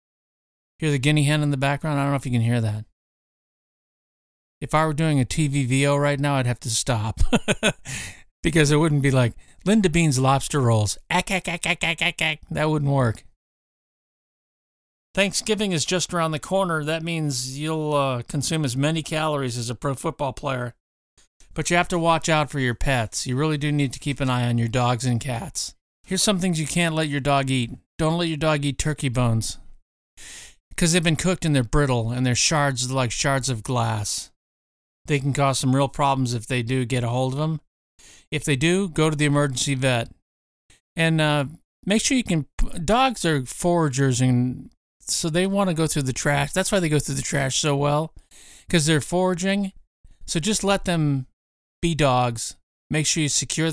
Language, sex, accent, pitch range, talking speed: English, male, American, 125-160 Hz, 200 wpm